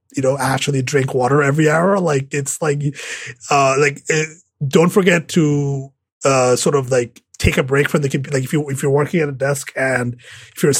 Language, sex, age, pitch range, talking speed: English, male, 30-49, 130-170 Hz, 210 wpm